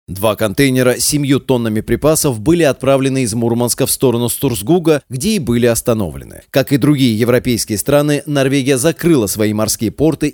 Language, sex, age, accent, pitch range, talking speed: Russian, male, 30-49, native, 115-150 Hz, 155 wpm